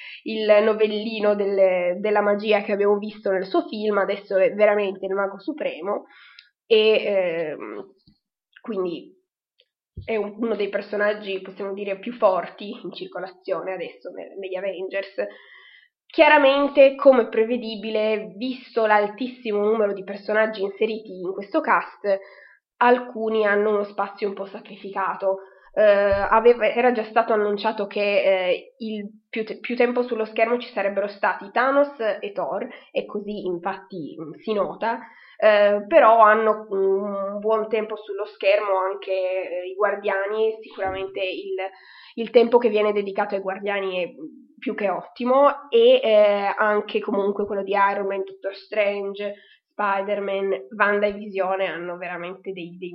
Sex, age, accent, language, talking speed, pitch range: female, 20-39, native, Italian, 140 wpm, 195-220 Hz